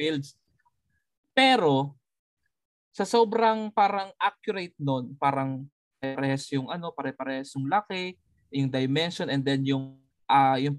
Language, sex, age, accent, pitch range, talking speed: Filipino, male, 20-39, native, 140-200 Hz, 105 wpm